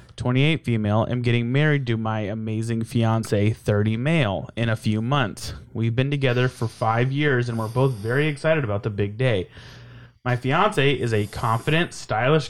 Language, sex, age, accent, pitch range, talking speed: English, male, 20-39, American, 115-135 Hz, 175 wpm